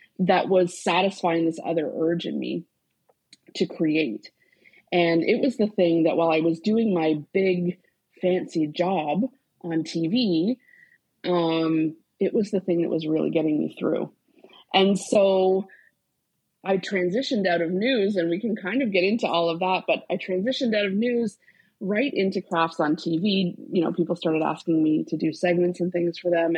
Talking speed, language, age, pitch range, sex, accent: 175 wpm, English, 30-49, 170-210 Hz, female, American